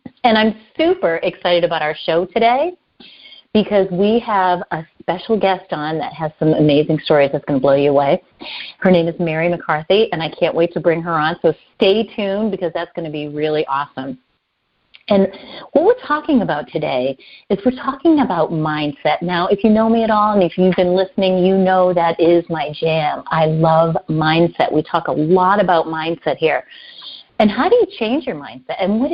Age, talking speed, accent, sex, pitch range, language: 40-59, 200 wpm, American, female, 155-210 Hz, English